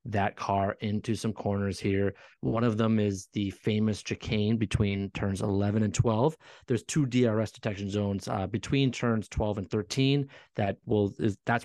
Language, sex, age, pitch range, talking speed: English, male, 30-49, 100-120 Hz, 170 wpm